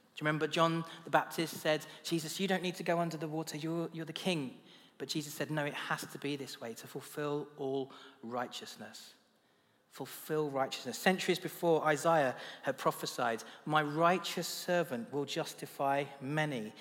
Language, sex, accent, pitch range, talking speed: English, male, British, 135-170 Hz, 170 wpm